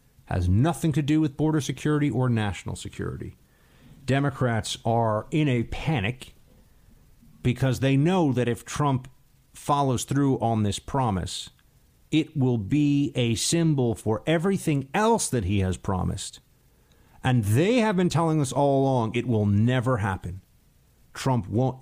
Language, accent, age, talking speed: English, American, 50-69, 145 wpm